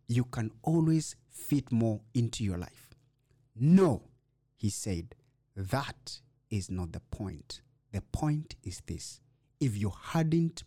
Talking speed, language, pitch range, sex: 130 wpm, English, 110-135 Hz, male